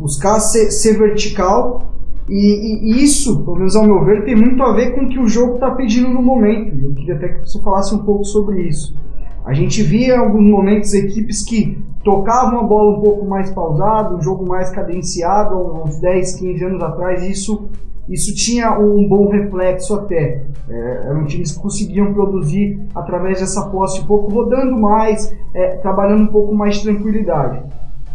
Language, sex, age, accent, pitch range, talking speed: Portuguese, male, 20-39, Brazilian, 185-225 Hz, 185 wpm